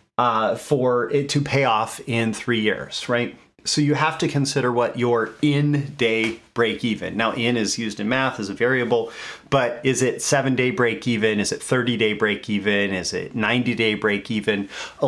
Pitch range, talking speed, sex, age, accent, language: 110-130 Hz, 165 wpm, male, 30-49, American, English